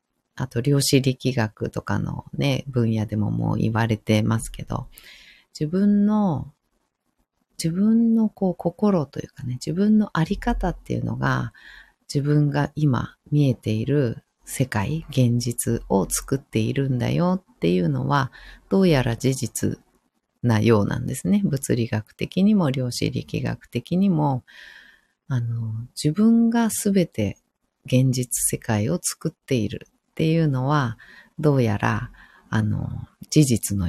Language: Japanese